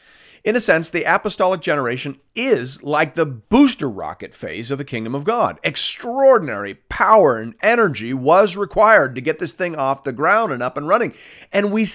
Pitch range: 125-185 Hz